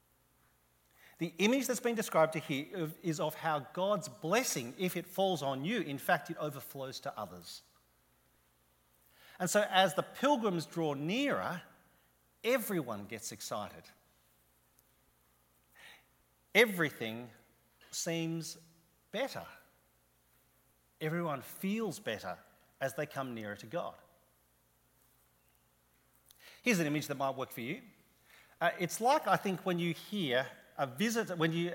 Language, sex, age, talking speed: English, male, 40-59, 120 wpm